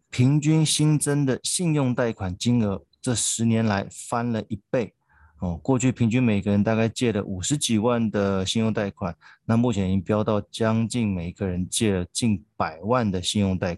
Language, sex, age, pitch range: Chinese, male, 20-39, 95-120 Hz